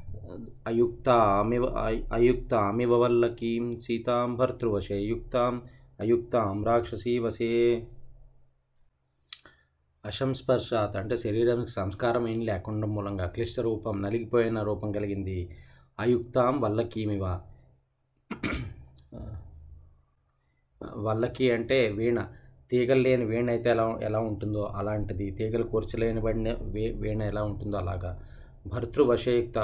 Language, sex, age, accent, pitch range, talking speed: Telugu, male, 20-39, native, 100-120 Hz, 85 wpm